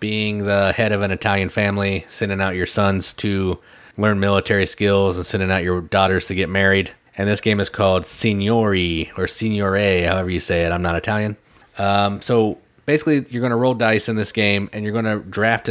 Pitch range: 95-110 Hz